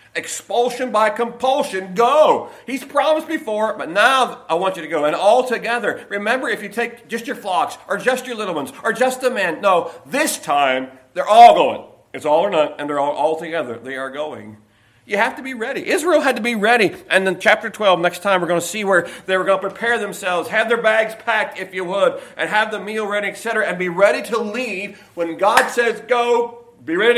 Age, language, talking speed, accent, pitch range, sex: 40-59, English, 225 wpm, American, 170-230 Hz, male